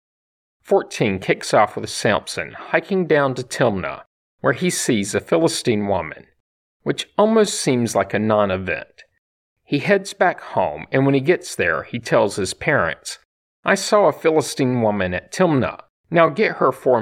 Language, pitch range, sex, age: English, 120-185 Hz, male, 50-69